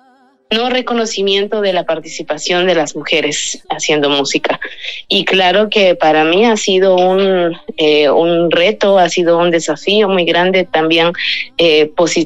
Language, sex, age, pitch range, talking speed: Spanish, female, 20-39, 155-180 Hz, 145 wpm